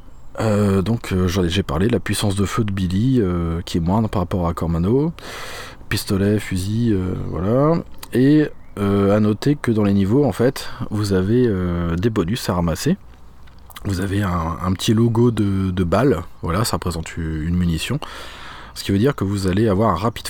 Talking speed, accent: 190 wpm, French